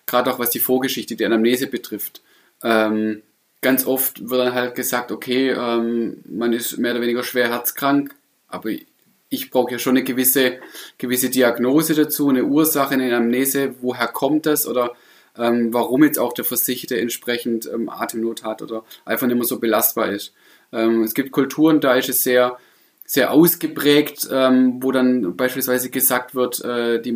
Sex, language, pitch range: male, German, 120-135 Hz